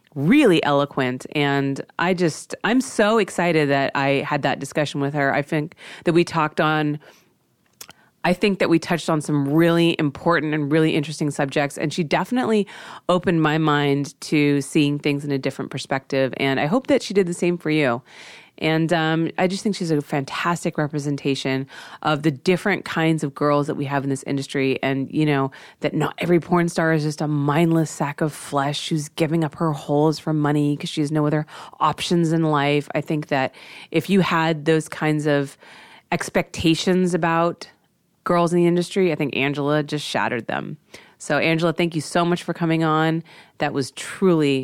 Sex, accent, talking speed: female, American, 190 wpm